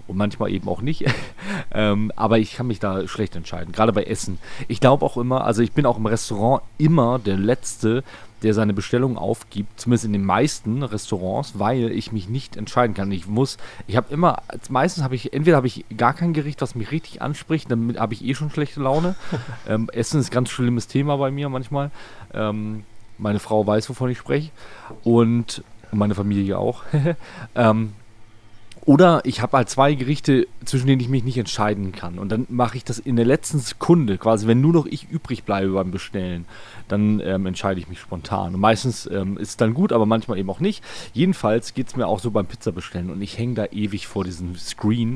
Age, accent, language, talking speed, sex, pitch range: 30-49, German, German, 205 wpm, male, 100-125 Hz